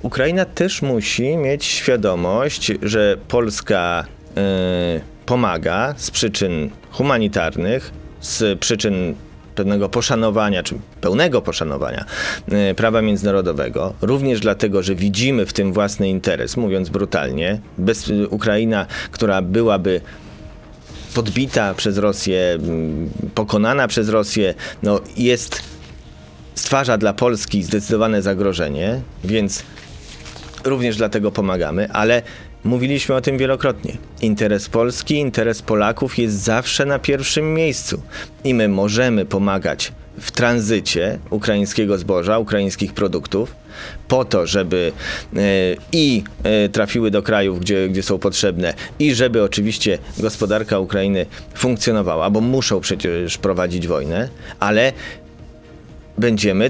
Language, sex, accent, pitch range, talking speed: Polish, male, native, 95-120 Hz, 100 wpm